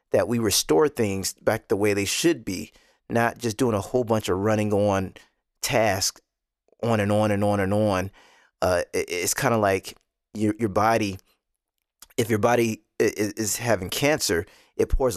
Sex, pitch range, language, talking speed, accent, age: male, 105-125 Hz, English, 170 wpm, American, 20-39